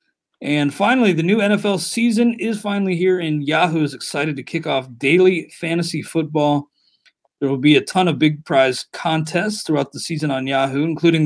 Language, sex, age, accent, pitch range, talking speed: English, male, 40-59, American, 140-175 Hz, 180 wpm